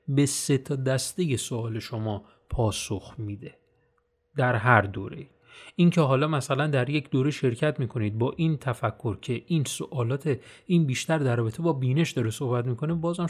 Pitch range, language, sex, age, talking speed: 125-175 Hz, Persian, male, 30-49, 160 wpm